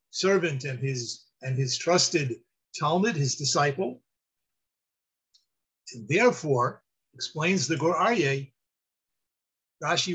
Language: English